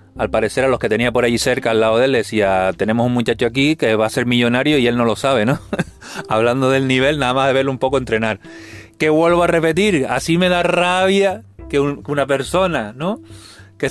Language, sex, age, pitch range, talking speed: Spanish, male, 30-49, 105-130 Hz, 230 wpm